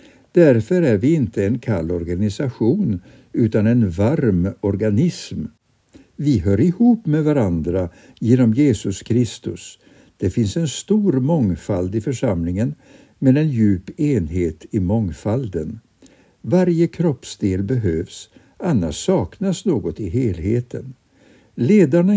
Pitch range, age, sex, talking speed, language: 95-150 Hz, 60-79, male, 110 wpm, Swedish